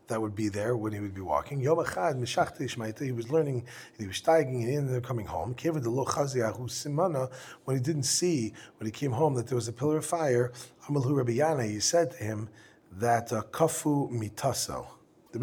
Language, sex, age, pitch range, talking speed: English, male, 40-59, 115-150 Hz, 180 wpm